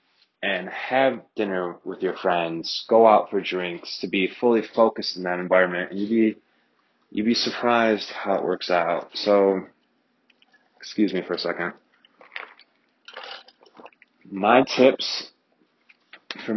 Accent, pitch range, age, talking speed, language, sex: American, 105-130 Hz, 30-49, 125 wpm, English, male